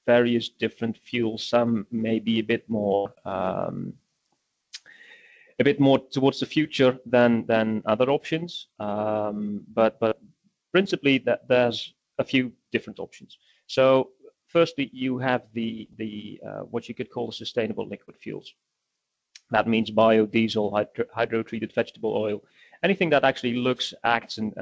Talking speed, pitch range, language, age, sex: 140 wpm, 110-135 Hz, English, 30-49, male